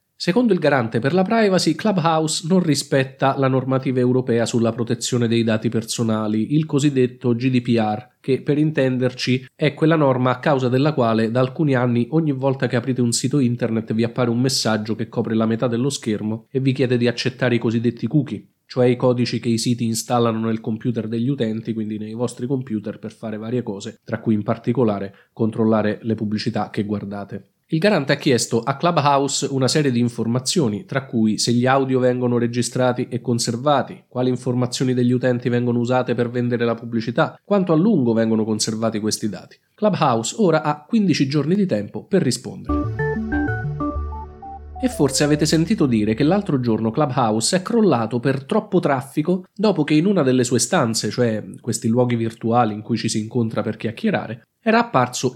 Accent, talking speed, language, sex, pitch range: native, 180 wpm, Italian, male, 115-140 Hz